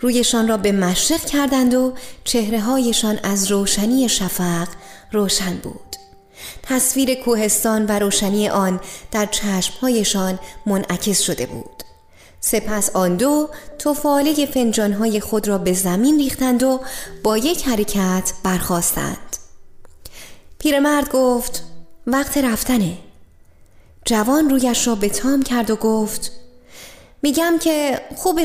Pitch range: 190-275 Hz